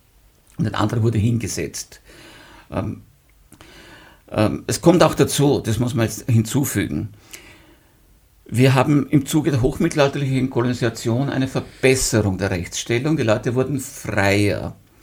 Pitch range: 105-130 Hz